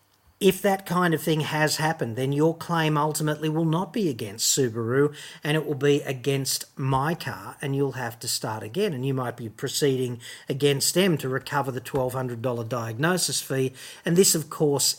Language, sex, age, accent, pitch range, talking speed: English, male, 40-59, Australian, 130-155 Hz, 185 wpm